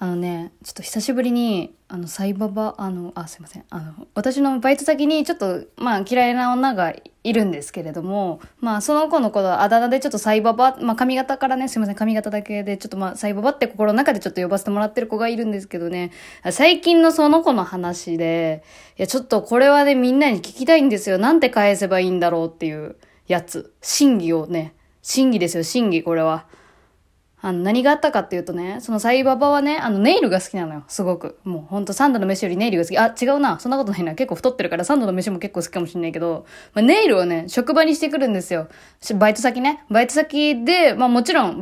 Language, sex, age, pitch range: Japanese, female, 20-39, 185-270 Hz